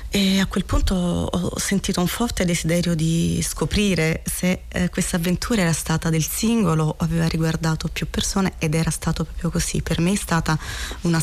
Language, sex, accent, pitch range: Italian, female, native, 165-190 Hz